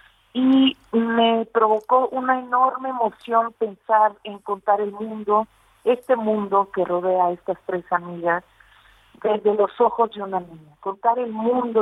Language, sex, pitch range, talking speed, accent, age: Spanish, female, 195-225 Hz, 140 wpm, Mexican, 40-59